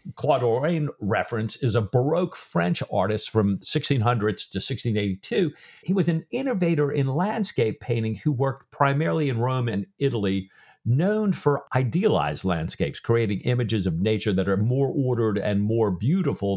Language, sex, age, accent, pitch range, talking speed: English, male, 50-69, American, 105-155 Hz, 150 wpm